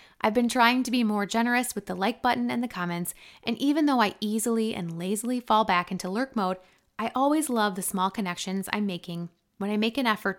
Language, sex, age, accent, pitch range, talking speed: English, female, 20-39, American, 190-235 Hz, 225 wpm